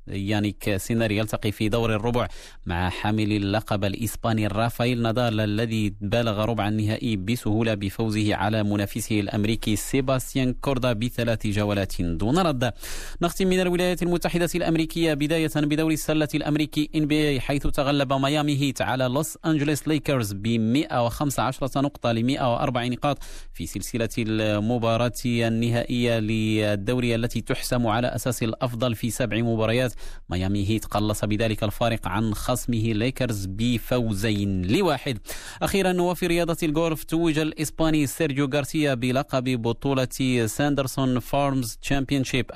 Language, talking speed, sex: Arabic, 125 wpm, male